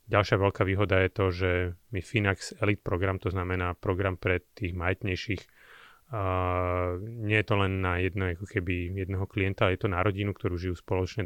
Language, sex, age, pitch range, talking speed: Slovak, male, 30-49, 90-105 Hz, 175 wpm